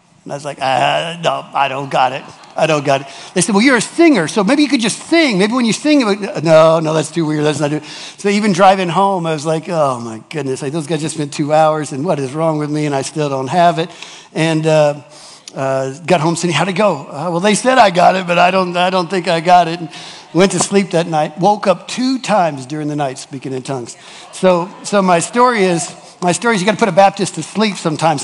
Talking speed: 270 wpm